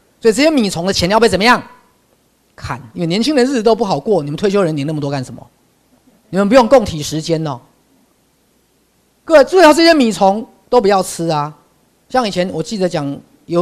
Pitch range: 140-205 Hz